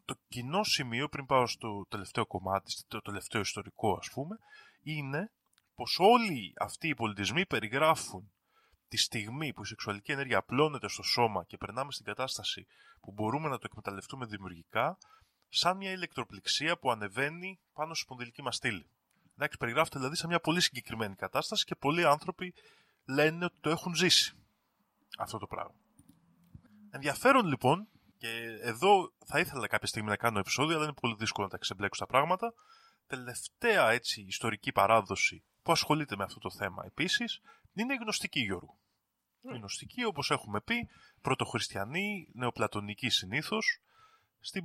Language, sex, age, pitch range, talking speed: Greek, male, 20-39, 110-160 Hz, 150 wpm